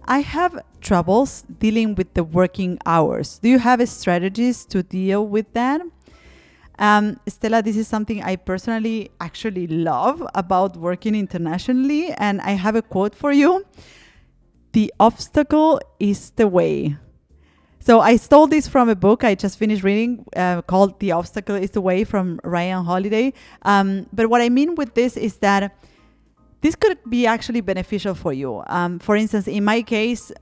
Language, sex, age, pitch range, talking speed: English, female, 30-49, 185-230 Hz, 165 wpm